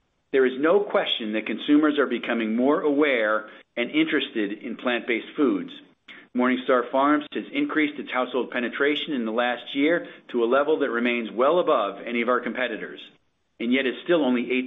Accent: American